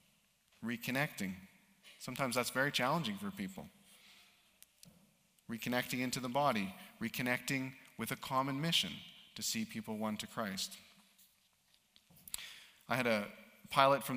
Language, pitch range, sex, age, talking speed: English, 110-185 Hz, male, 40-59, 115 wpm